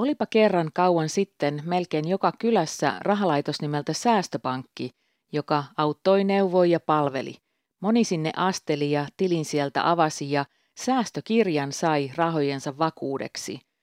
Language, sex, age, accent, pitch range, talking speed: Finnish, female, 40-59, native, 150-190 Hz, 115 wpm